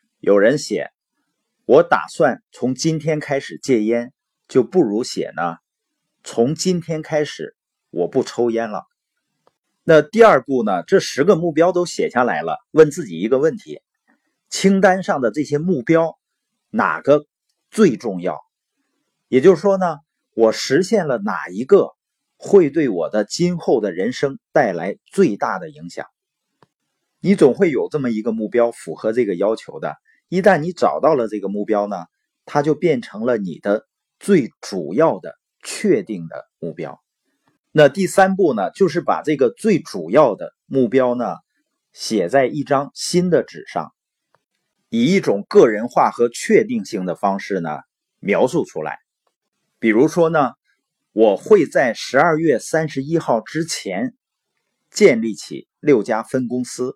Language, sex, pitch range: Chinese, male, 120-185 Hz